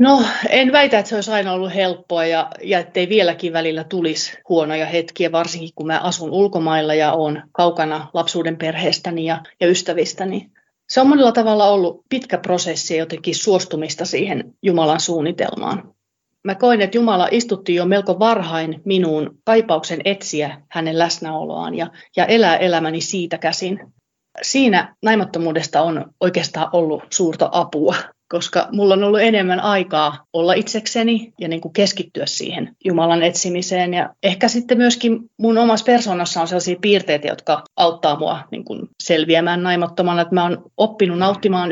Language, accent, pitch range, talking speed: Finnish, native, 165-195 Hz, 150 wpm